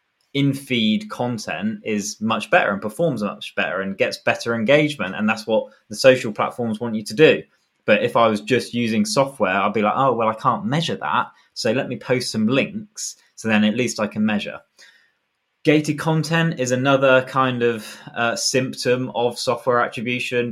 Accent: British